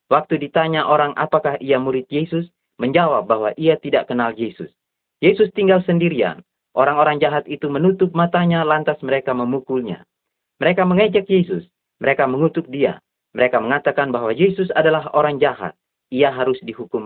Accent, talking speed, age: native, 140 wpm, 30-49